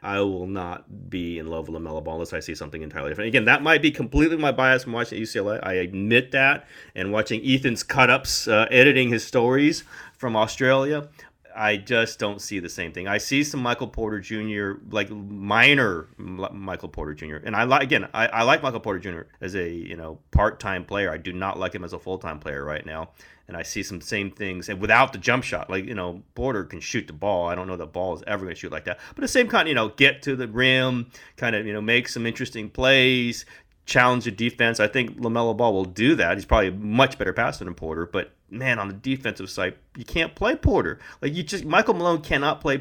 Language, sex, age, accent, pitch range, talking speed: English, male, 30-49, American, 95-125 Hz, 235 wpm